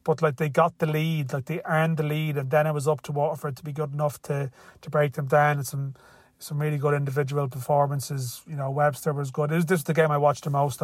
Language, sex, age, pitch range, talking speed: English, male, 30-49, 145-160 Hz, 270 wpm